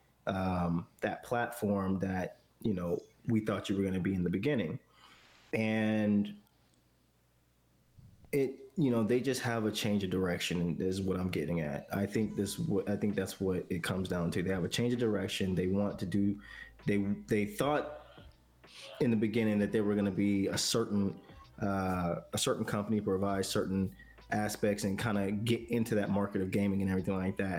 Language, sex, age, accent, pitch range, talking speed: English, male, 20-39, American, 95-110 Hz, 190 wpm